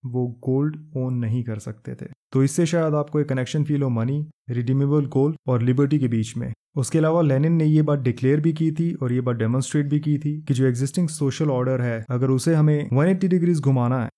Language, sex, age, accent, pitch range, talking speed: Hindi, male, 20-39, native, 125-150 Hz, 215 wpm